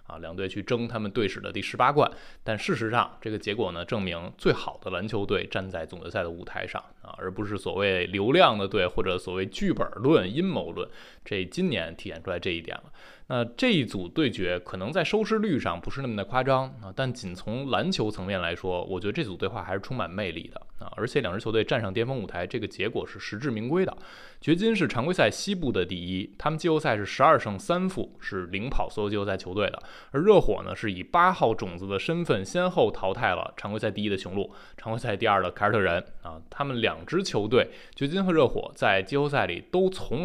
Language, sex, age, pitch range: Chinese, male, 20-39, 95-135 Hz